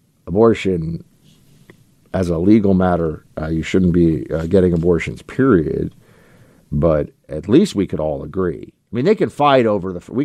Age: 50-69